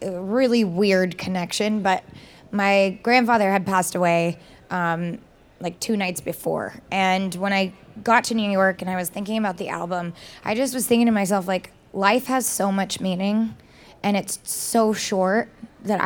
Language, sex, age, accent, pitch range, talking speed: English, female, 20-39, American, 190-225 Hz, 170 wpm